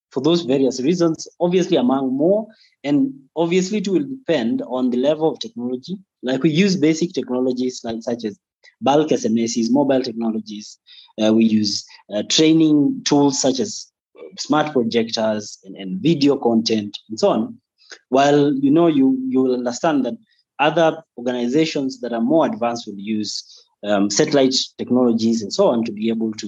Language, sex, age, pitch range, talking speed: English, male, 20-39, 115-160 Hz, 160 wpm